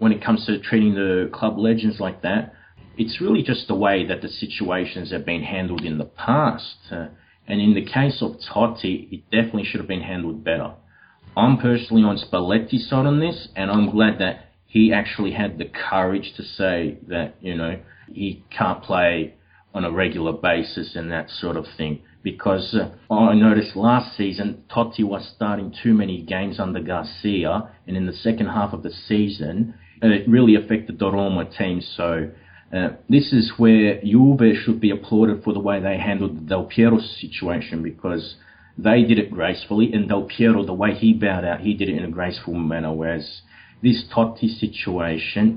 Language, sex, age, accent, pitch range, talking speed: English, male, 30-49, Australian, 90-110 Hz, 185 wpm